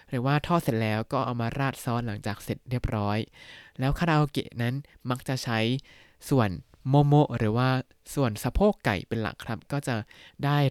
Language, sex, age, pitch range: Thai, male, 20-39, 110-145 Hz